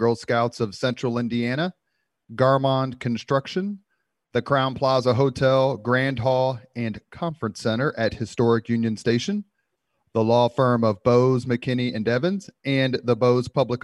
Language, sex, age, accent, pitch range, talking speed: English, male, 30-49, American, 110-145 Hz, 140 wpm